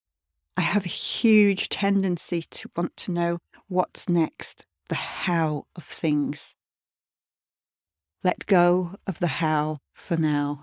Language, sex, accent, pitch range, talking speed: English, female, British, 140-180 Hz, 125 wpm